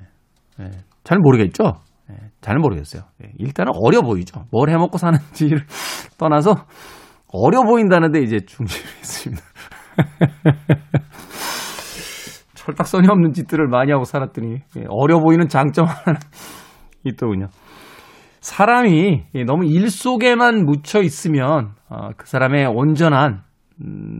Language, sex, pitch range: Korean, male, 125-185 Hz